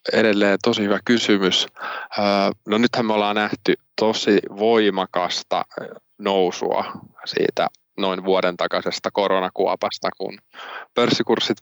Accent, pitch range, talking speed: native, 90-105 Hz, 100 wpm